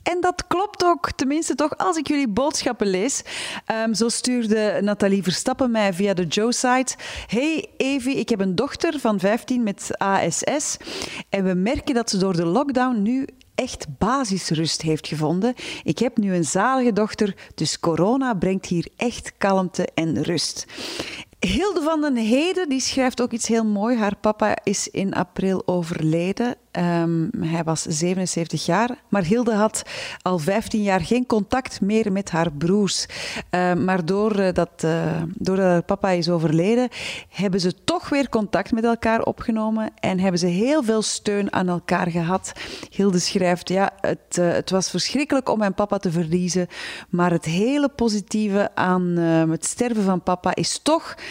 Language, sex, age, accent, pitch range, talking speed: Dutch, female, 40-59, Dutch, 180-240 Hz, 165 wpm